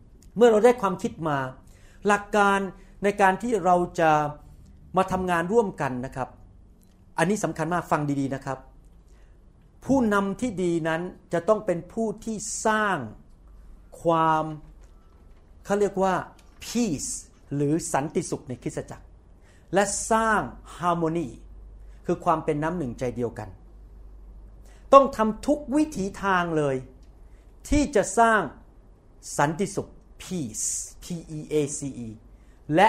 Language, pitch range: Thai, 130-200 Hz